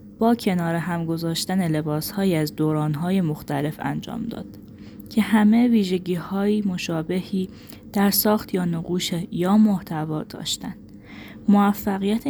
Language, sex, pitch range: Persian, female, 155-200 Hz